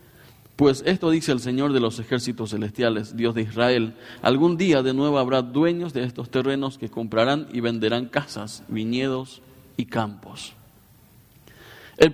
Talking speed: 150 wpm